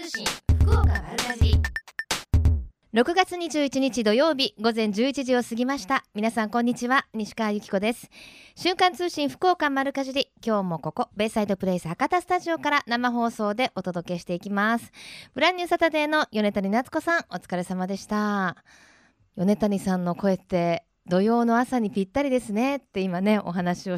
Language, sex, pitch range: Japanese, female, 195-275 Hz